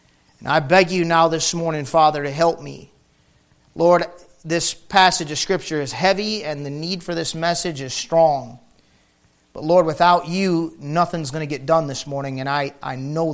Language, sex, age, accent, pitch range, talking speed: English, male, 40-59, American, 140-170 Hz, 185 wpm